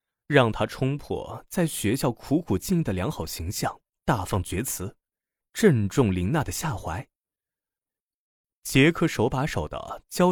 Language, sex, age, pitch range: Chinese, male, 30-49, 95-145 Hz